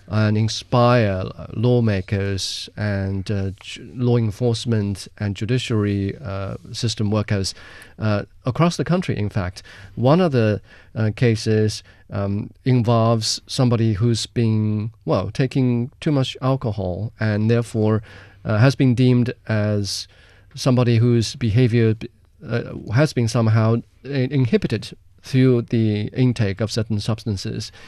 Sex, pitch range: male, 105-125 Hz